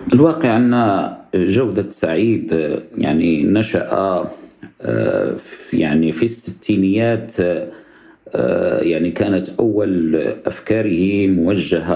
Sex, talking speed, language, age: male, 70 wpm, Arabic, 50-69